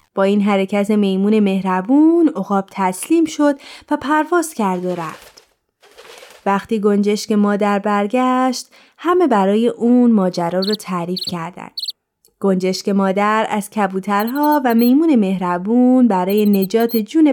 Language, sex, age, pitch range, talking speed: Persian, female, 20-39, 200-265 Hz, 120 wpm